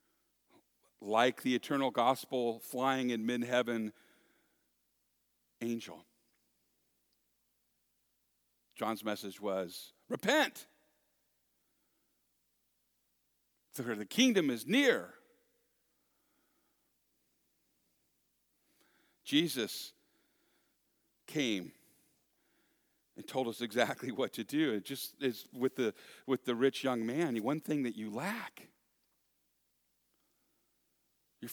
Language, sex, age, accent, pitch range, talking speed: English, male, 50-69, American, 110-140 Hz, 80 wpm